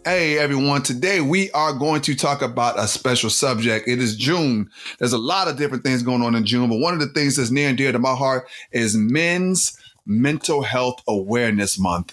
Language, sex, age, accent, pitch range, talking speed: English, male, 30-49, American, 105-135 Hz, 215 wpm